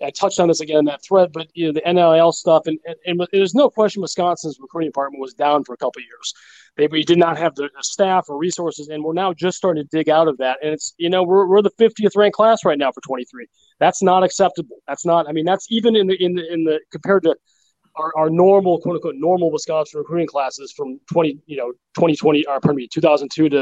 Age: 30-49